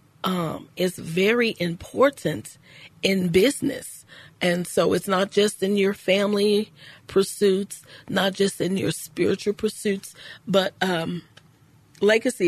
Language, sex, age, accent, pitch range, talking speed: English, female, 40-59, American, 155-190 Hz, 115 wpm